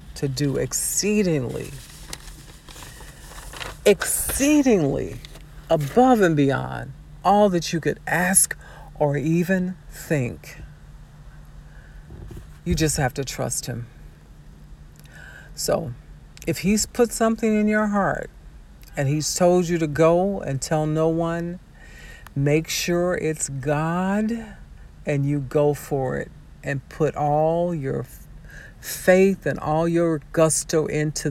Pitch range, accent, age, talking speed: 135-165 Hz, American, 50-69, 110 wpm